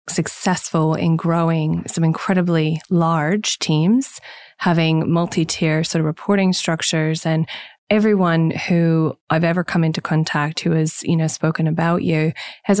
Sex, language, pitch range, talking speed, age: female, English, 155-180 Hz, 135 wpm, 20-39